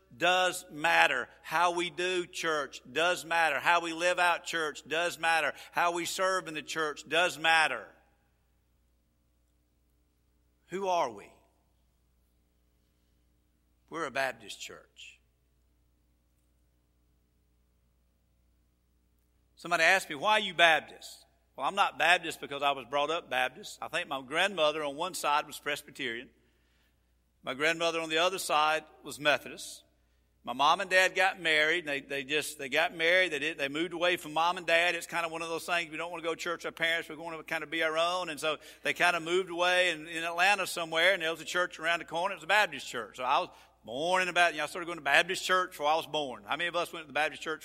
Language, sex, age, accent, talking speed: English, male, 50-69, American, 205 wpm